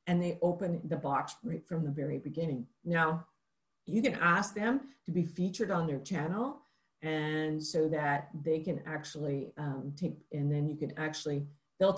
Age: 50-69